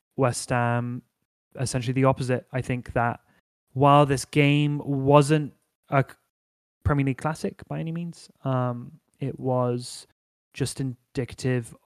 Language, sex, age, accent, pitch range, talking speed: English, male, 20-39, British, 120-140 Hz, 120 wpm